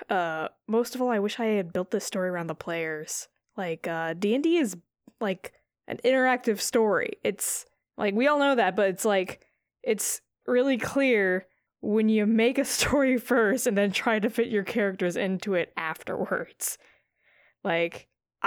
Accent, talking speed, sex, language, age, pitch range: American, 165 wpm, female, English, 10-29, 205-310 Hz